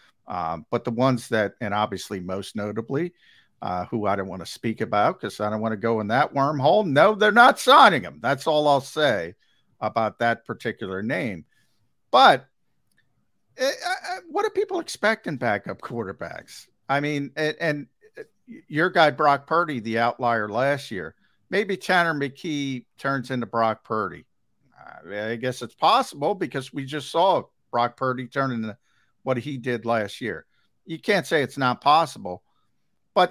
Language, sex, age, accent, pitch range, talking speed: English, male, 50-69, American, 110-145 Hz, 170 wpm